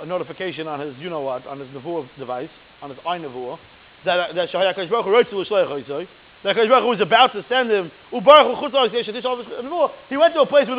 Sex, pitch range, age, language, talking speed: male, 195-290 Hz, 30-49, English, 185 wpm